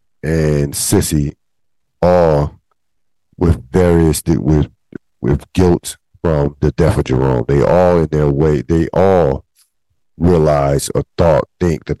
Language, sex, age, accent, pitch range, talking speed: English, male, 50-69, American, 70-80 Hz, 125 wpm